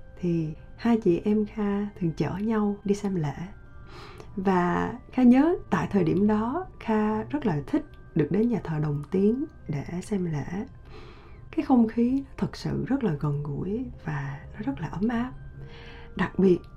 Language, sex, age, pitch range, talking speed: Vietnamese, female, 20-39, 165-225 Hz, 170 wpm